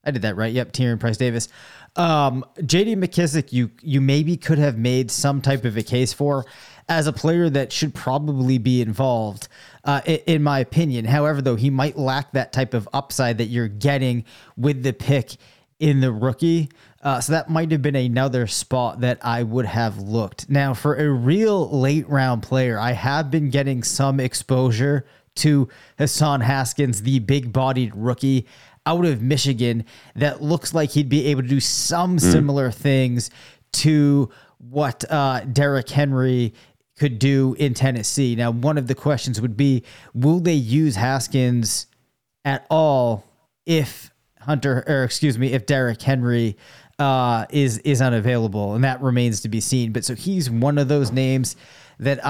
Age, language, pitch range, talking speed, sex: 20-39, English, 125-145 Hz, 170 wpm, male